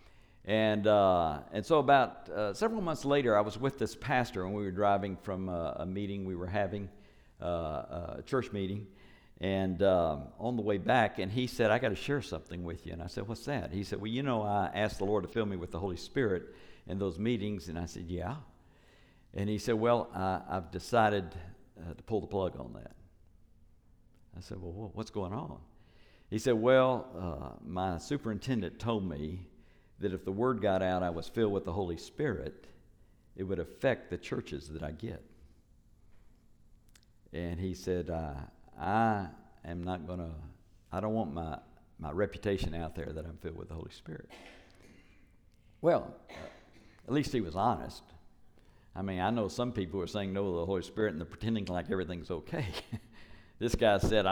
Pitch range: 90-110 Hz